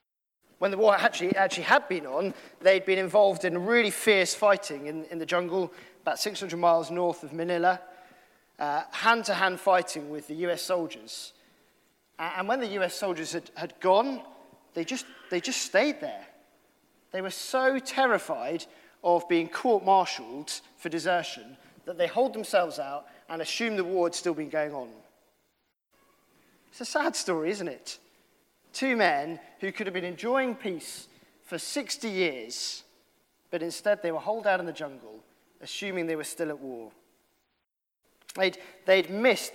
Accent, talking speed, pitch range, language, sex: British, 155 wpm, 170-235 Hz, English, male